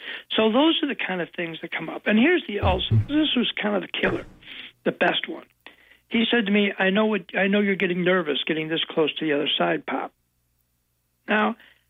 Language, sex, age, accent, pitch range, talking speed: English, male, 60-79, American, 165-225 Hz, 210 wpm